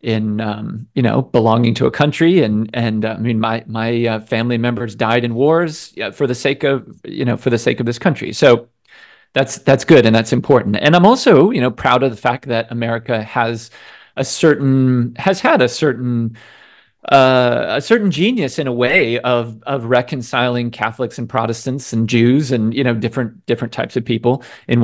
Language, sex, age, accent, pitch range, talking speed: English, male, 40-59, American, 115-140 Hz, 200 wpm